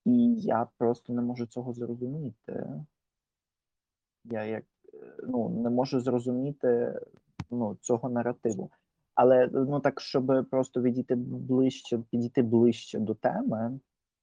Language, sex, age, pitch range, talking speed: Ukrainian, male, 30-49, 115-130 Hz, 110 wpm